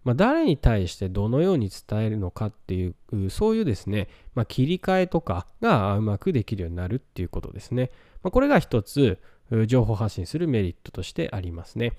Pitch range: 100-160 Hz